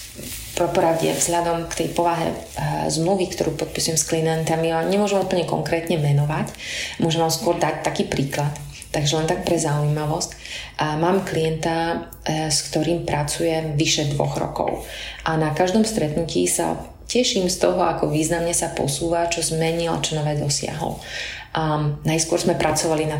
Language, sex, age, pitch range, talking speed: Slovak, female, 30-49, 155-180 Hz, 155 wpm